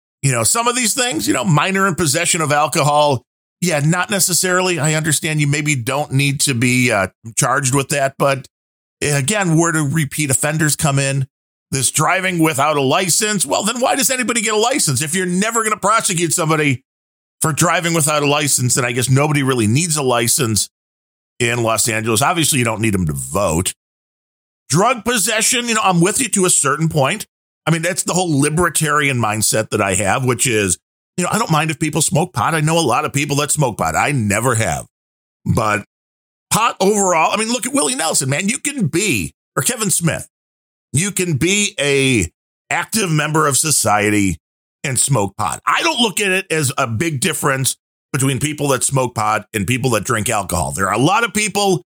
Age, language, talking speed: 40-59, English, 200 wpm